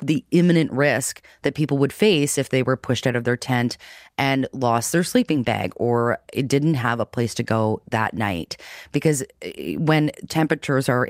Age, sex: 30-49, female